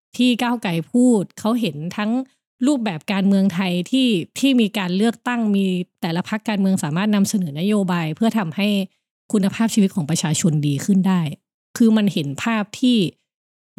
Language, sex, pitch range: Thai, female, 170-225 Hz